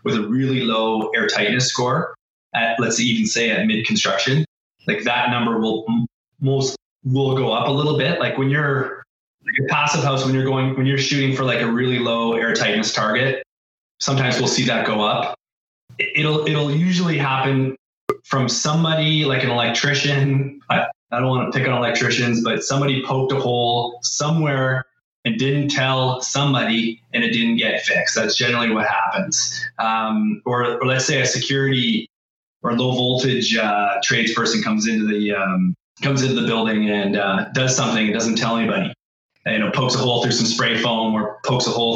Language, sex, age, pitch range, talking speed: English, male, 20-39, 115-135 Hz, 185 wpm